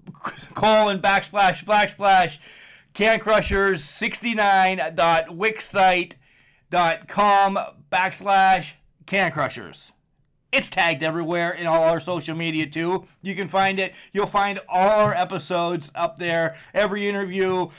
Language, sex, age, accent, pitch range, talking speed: English, male, 30-49, American, 170-200 Hz, 105 wpm